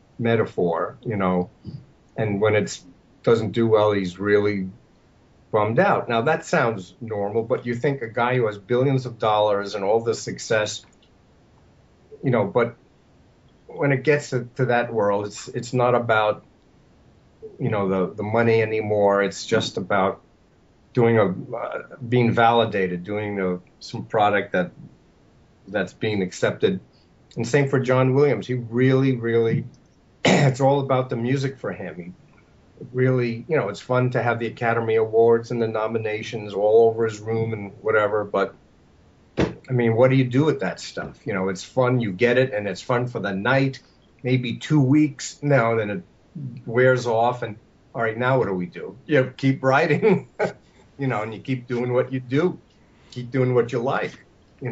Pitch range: 105-130 Hz